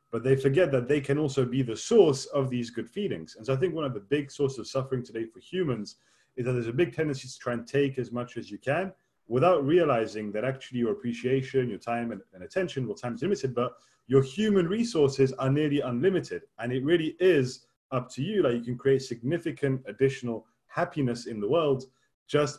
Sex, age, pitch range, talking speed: male, 30-49, 120-150 Hz, 220 wpm